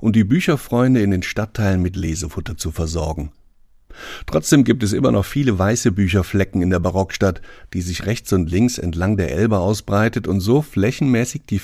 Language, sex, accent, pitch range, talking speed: German, male, German, 90-120 Hz, 175 wpm